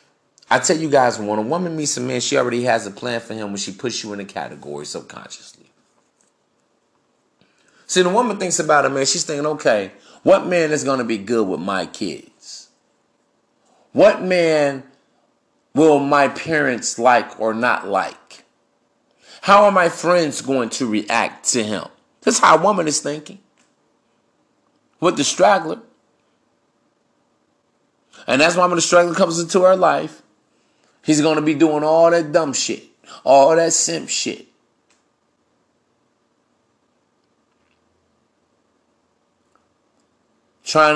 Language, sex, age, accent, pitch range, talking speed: English, male, 30-49, American, 135-170 Hz, 140 wpm